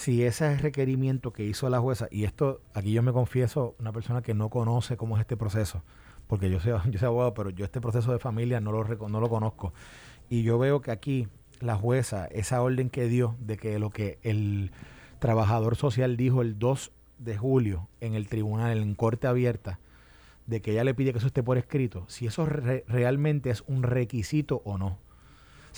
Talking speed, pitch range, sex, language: 200 wpm, 115-145 Hz, male, Spanish